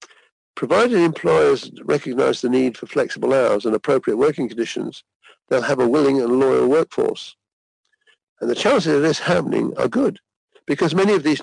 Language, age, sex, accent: English, 60-79, male, British